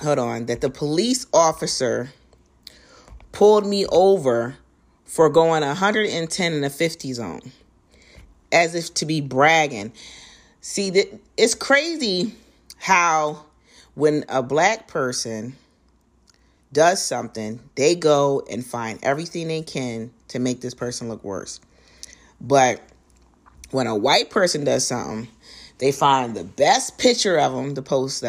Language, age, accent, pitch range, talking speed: English, 40-59, American, 125-165 Hz, 125 wpm